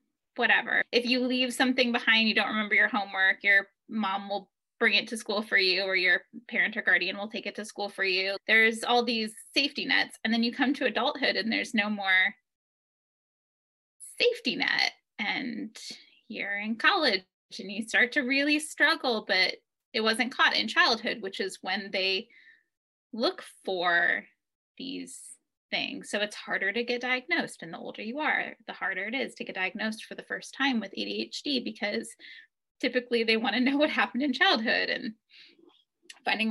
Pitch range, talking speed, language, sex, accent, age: 205-265 Hz, 180 wpm, English, female, American, 10-29